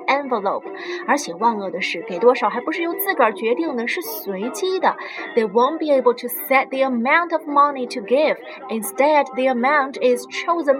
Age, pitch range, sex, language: 20-39, 250-335 Hz, female, Chinese